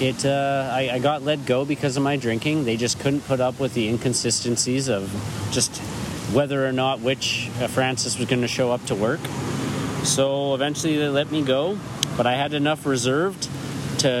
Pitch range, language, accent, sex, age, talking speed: 120-140 Hz, English, American, male, 40-59, 185 wpm